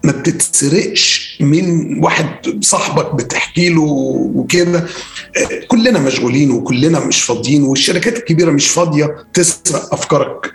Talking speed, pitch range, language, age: 110 wpm, 145-195 Hz, Arabic, 40-59